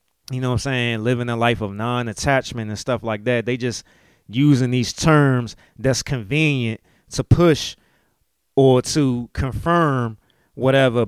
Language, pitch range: English, 110-135 Hz